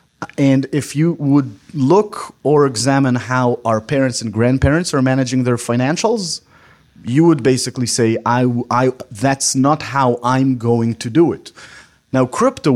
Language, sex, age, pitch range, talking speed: English, male, 30-49, 115-135 Hz, 150 wpm